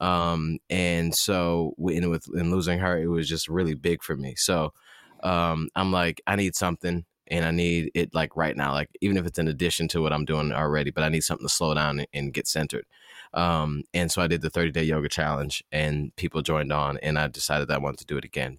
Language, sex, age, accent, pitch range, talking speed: English, male, 20-39, American, 80-90 Hz, 240 wpm